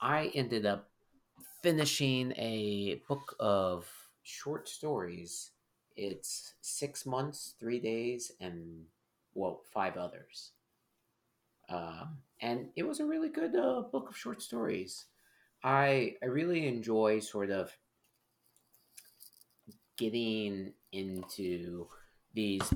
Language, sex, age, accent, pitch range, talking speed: English, male, 30-49, American, 90-115 Hz, 105 wpm